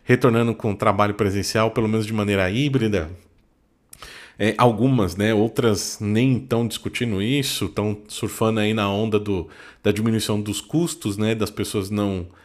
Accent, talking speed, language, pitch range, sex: Brazilian, 155 wpm, Portuguese, 100-125 Hz, male